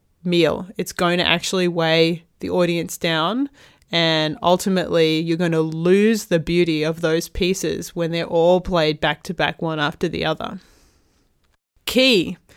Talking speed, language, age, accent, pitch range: 155 wpm, English, 20-39, Australian, 165-200 Hz